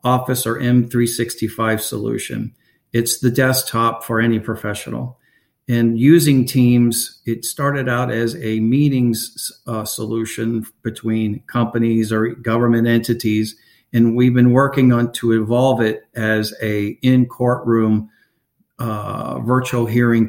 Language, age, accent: English, 50-69, American